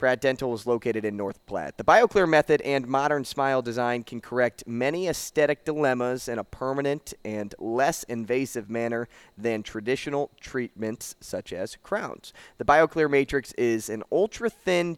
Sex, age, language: male, 20-39, English